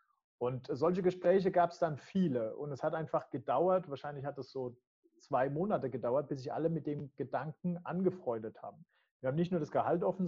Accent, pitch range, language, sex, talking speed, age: German, 125-175 Hz, English, male, 200 wpm, 40-59